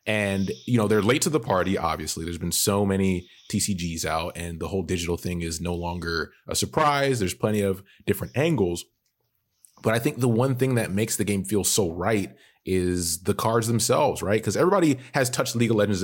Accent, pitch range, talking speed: American, 90-110 Hz, 205 wpm